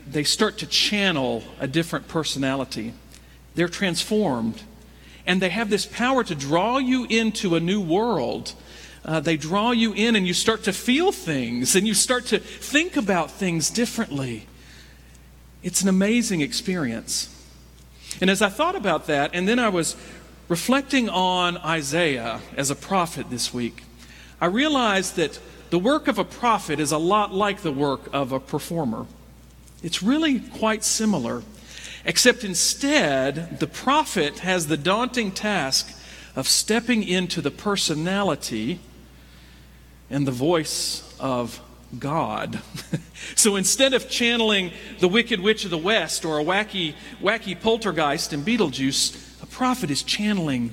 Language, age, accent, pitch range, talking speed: English, 50-69, American, 140-220 Hz, 145 wpm